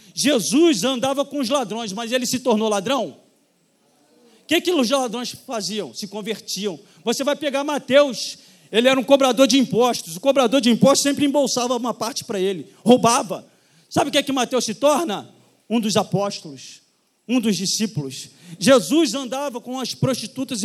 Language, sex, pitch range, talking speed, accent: Portuguese, male, 215-280 Hz, 165 wpm, Brazilian